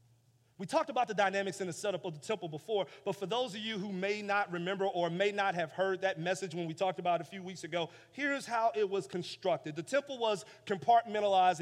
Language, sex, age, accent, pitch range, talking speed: English, male, 30-49, American, 150-205 Hz, 240 wpm